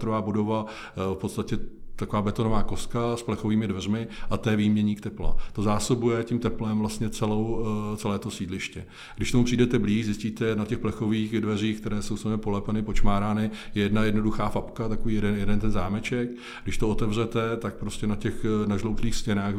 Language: Czech